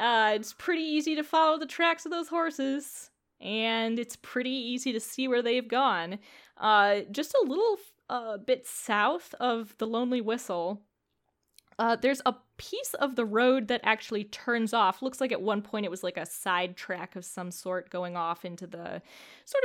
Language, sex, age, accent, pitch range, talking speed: English, female, 10-29, American, 200-265 Hz, 185 wpm